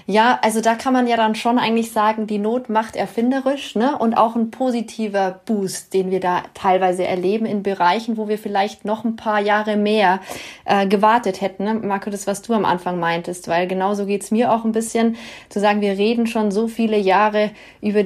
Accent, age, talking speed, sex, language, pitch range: German, 30-49, 210 wpm, female, German, 195-220 Hz